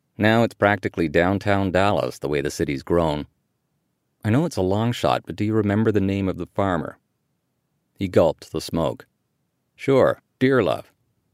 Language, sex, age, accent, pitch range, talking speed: English, male, 50-69, American, 90-115 Hz, 165 wpm